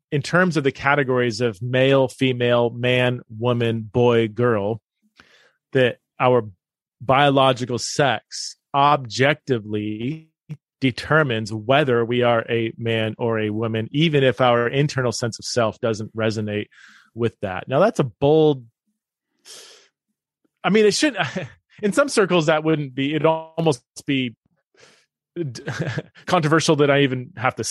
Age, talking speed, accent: 30-49, 130 wpm, American